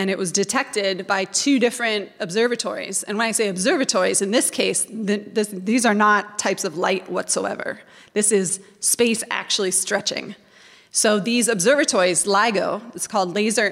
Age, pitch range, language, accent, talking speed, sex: 20-39, 190-230 Hz, English, American, 155 wpm, female